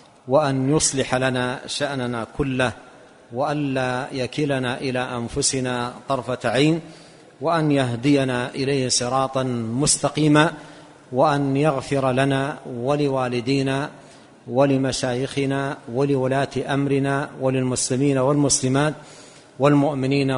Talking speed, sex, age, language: 80 wpm, male, 50-69, Arabic